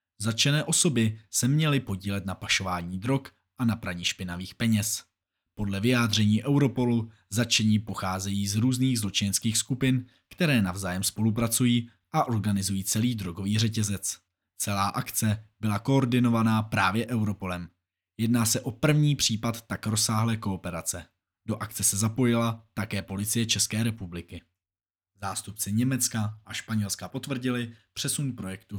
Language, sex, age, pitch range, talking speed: Czech, male, 20-39, 100-115 Hz, 125 wpm